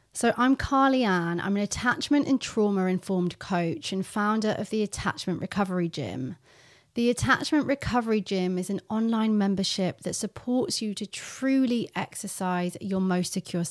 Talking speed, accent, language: 150 wpm, British, English